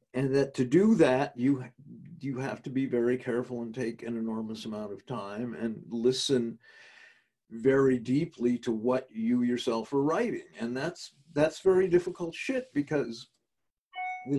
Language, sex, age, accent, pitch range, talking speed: English, male, 50-69, American, 125-175 Hz, 155 wpm